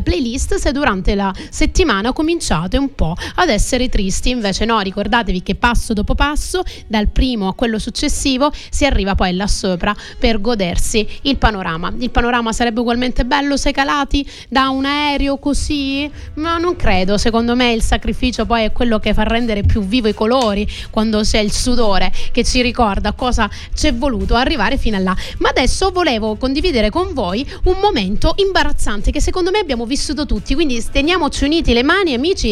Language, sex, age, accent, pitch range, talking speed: Italian, female, 30-49, native, 220-290 Hz, 175 wpm